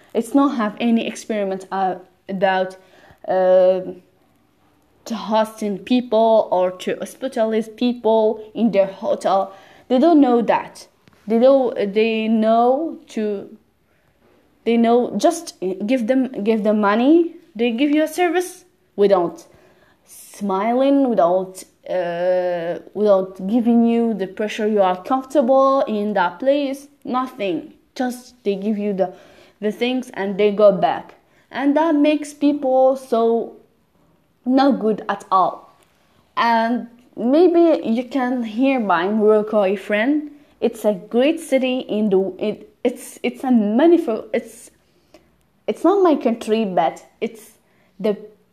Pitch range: 200-270 Hz